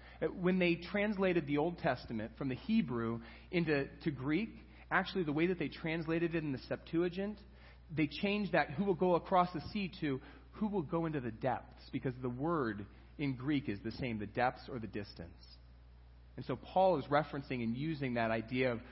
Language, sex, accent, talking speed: English, male, American, 195 wpm